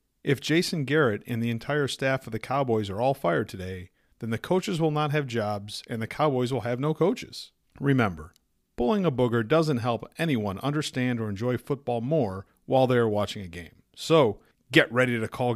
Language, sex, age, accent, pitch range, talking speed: English, male, 40-59, American, 115-160 Hz, 195 wpm